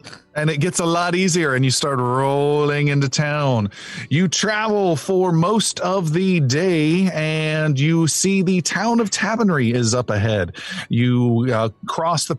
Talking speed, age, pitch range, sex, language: 160 wpm, 40-59, 125-170 Hz, male, English